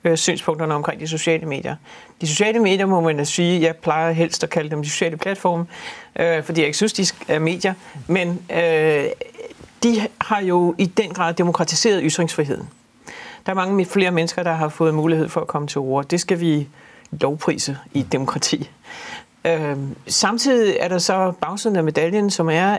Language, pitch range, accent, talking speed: Danish, 155-195 Hz, native, 185 wpm